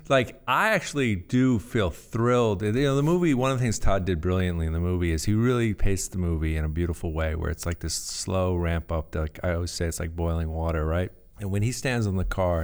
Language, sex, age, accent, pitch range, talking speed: English, male, 50-69, American, 85-105 Hz, 250 wpm